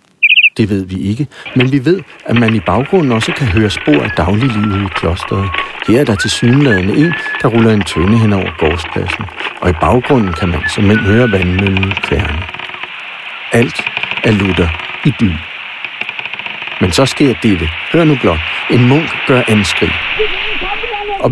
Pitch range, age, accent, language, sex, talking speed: 100-140 Hz, 60-79, native, Danish, male, 165 wpm